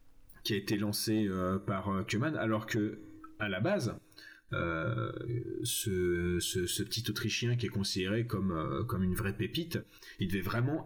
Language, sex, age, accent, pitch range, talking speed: French, male, 30-49, French, 100-125 Hz, 165 wpm